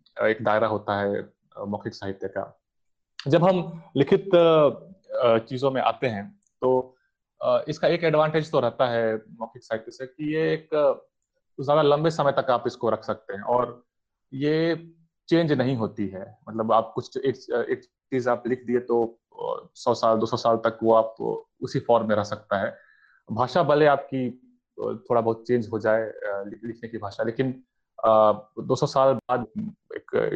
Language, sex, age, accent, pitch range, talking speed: English, male, 30-49, Indian, 110-160 Hz, 160 wpm